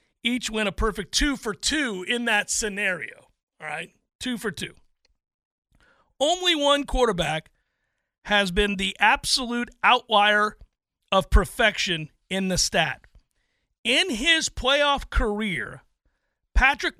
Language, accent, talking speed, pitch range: English, American, 100 wpm, 180-240 Hz